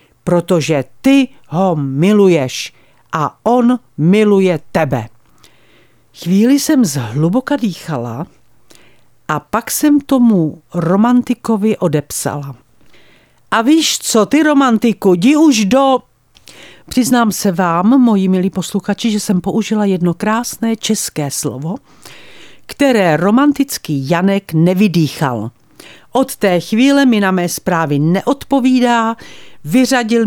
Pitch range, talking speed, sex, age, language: 165-240 Hz, 105 wpm, female, 50-69, Czech